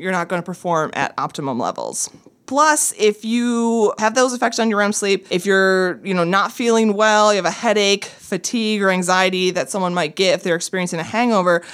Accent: American